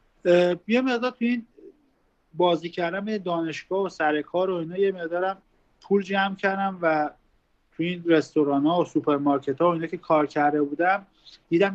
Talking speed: 155 wpm